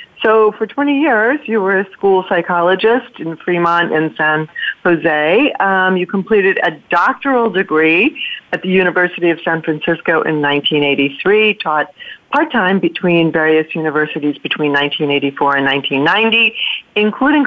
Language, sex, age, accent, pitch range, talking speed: English, female, 40-59, American, 150-195 Hz, 130 wpm